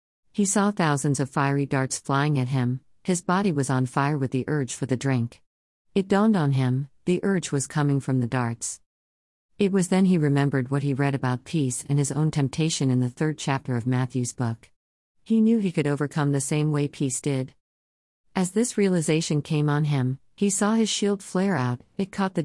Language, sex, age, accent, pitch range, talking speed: English, female, 50-69, American, 130-165 Hz, 205 wpm